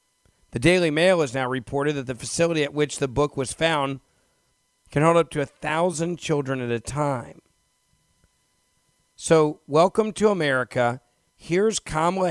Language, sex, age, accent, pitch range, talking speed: English, male, 40-59, American, 135-170 Hz, 150 wpm